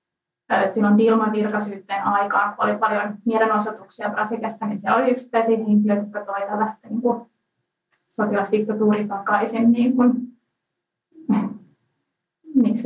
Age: 20-39